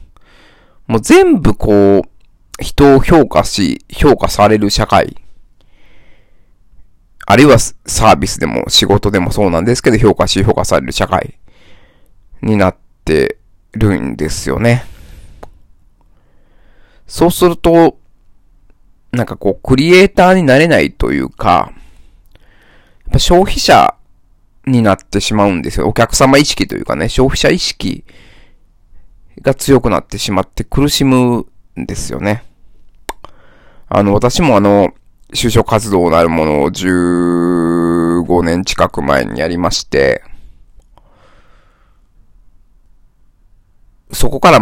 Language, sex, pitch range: Japanese, male, 85-115 Hz